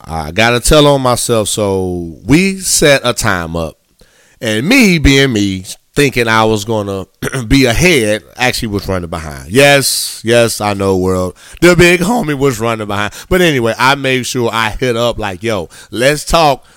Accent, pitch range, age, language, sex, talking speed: American, 95-120 Hz, 30-49, English, male, 180 wpm